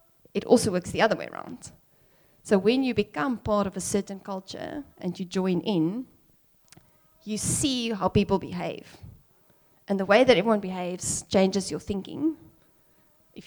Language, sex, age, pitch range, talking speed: English, female, 30-49, 180-220 Hz, 155 wpm